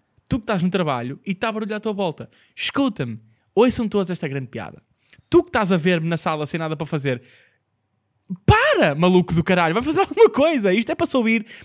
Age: 20-39